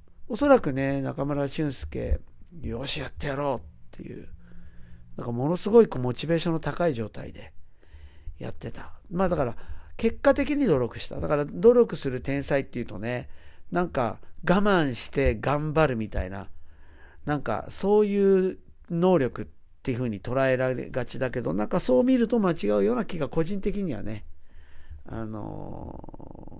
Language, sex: Japanese, male